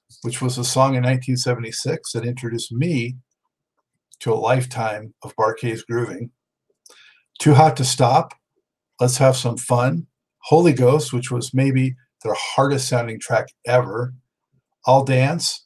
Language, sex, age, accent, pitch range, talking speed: English, male, 50-69, American, 120-145 Hz, 135 wpm